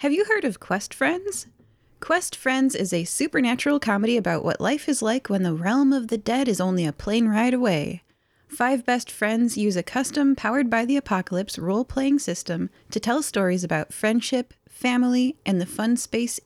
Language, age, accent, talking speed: English, 20-39, American, 185 wpm